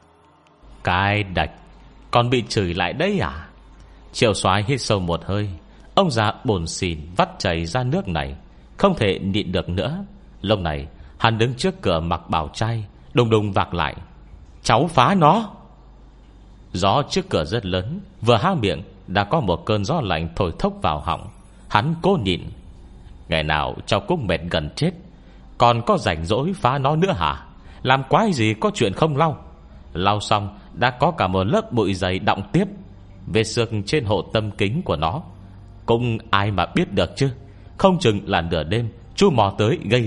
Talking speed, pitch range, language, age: 180 wpm, 90-120 Hz, Vietnamese, 30-49